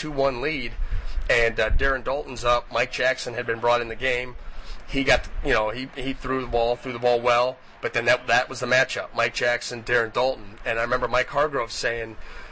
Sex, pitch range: male, 115-130 Hz